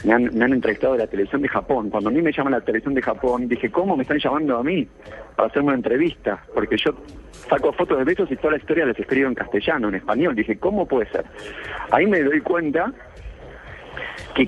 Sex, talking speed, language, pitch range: male, 230 wpm, Spanish, 120-145 Hz